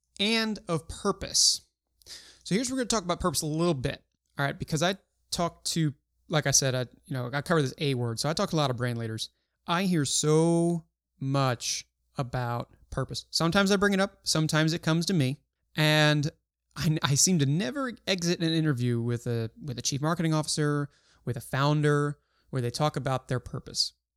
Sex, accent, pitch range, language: male, American, 130-170 Hz, English